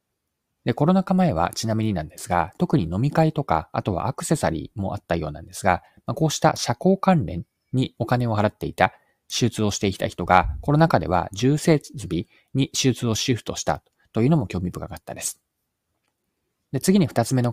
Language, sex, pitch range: Japanese, male, 95-140 Hz